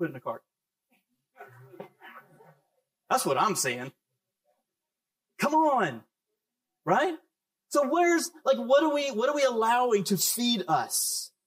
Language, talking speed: English, 130 wpm